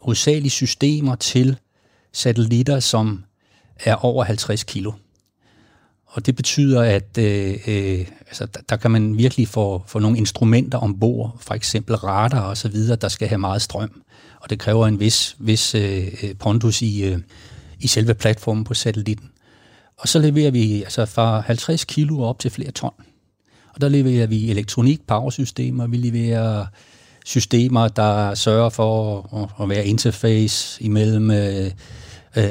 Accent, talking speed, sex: native, 150 wpm, male